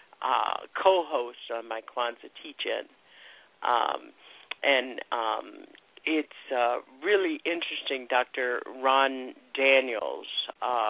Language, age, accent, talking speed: English, 50-69, American, 105 wpm